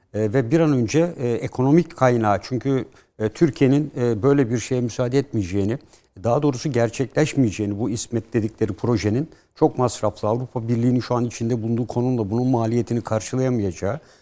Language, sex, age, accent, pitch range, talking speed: Turkish, male, 60-79, native, 110-140 Hz, 150 wpm